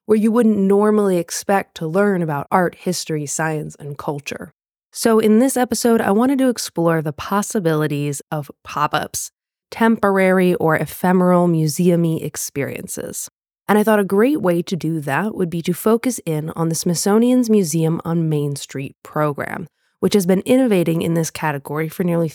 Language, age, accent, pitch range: English, 20-39, American, 160-210 Hz